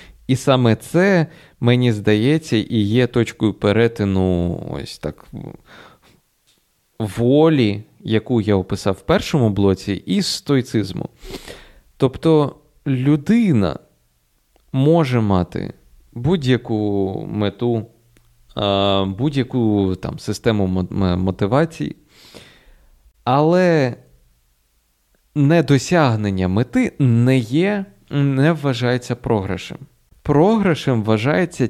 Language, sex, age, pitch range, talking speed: Ukrainian, male, 20-39, 100-140 Hz, 75 wpm